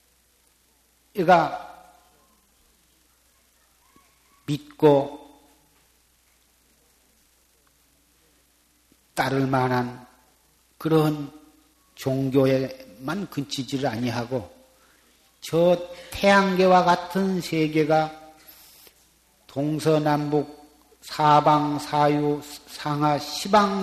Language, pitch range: Korean, 125-180 Hz